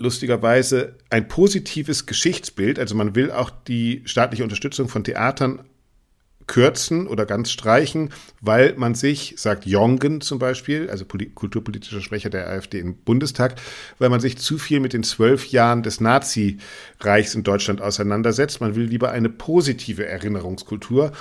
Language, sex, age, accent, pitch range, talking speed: German, male, 50-69, German, 110-135 Hz, 145 wpm